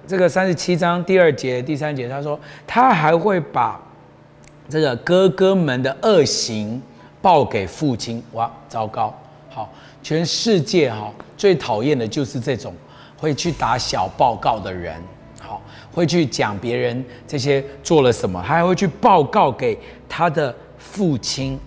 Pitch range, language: 130-190 Hz, Chinese